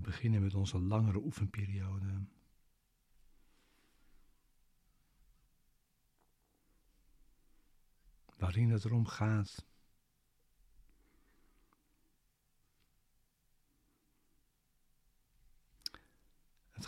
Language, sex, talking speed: Dutch, male, 40 wpm